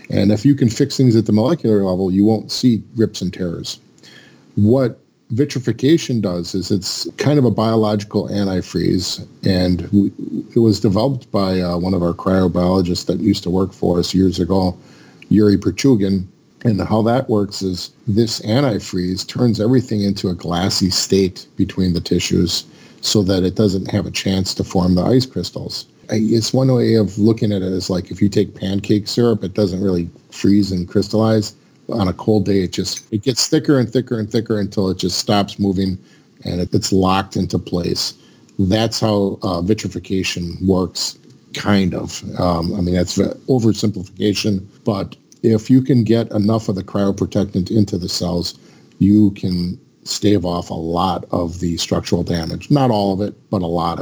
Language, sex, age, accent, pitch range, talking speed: English, male, 50-69, American, 90-110 Hz, 175 wpm